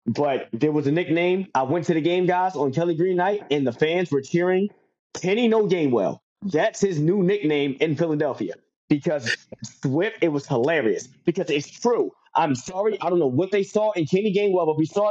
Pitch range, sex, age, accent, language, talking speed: 145-185 Hz, male, 20-39, American, English, 205 wpm